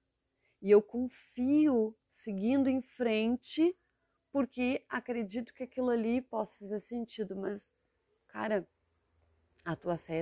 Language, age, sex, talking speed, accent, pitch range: Portuguese, 30-49, female, 115 wpm, Brazilian, 155-220 Hz